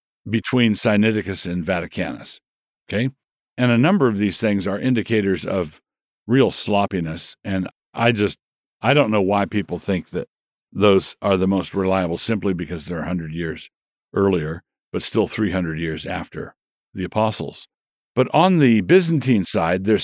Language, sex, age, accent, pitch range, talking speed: English, male, 50-69, American, 90-110 Hz, 155 wpm